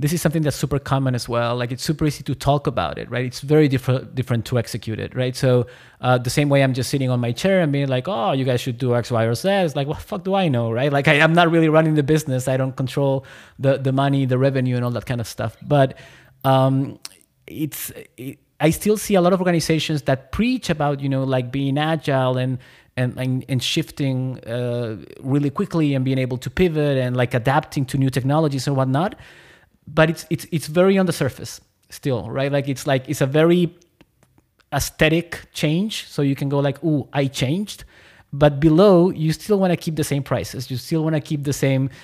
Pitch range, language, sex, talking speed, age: 130-165 Hz, English, male, 230 wpm, 20-39